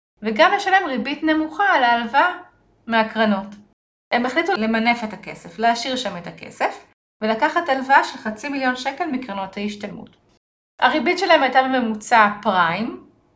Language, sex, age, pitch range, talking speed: Hebrew, female, 30-49, 210-285 Hz, 130 wpm